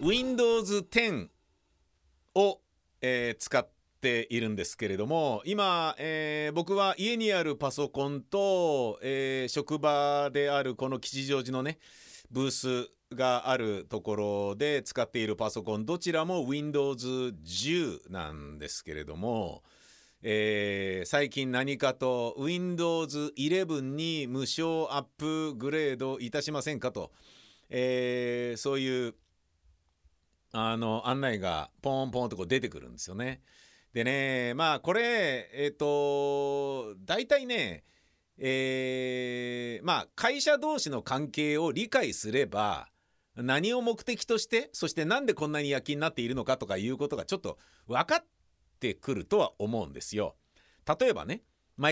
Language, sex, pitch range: Japanese, male, 115-150 Hz